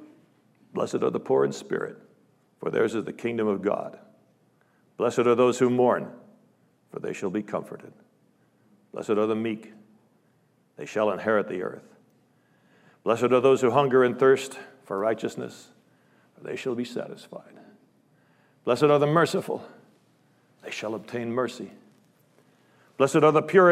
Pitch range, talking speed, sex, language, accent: 110-135 Hz, 145 wpm, male, English, American